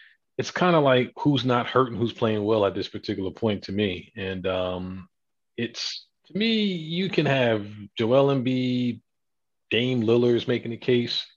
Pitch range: 100-115 Hz